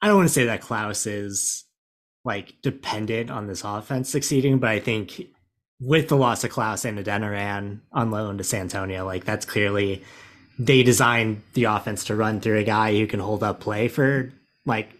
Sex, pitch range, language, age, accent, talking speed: male, 105-125 Hz, English, 20-39, American, 190 wpm